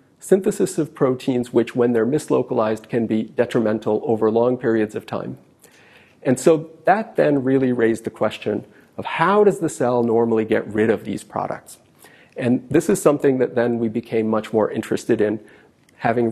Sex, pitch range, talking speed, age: male, 115-150 Hz, 175 wpm, 40-59